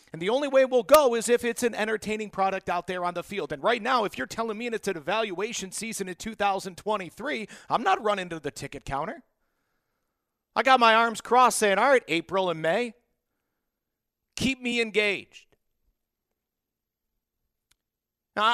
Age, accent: 50-69, American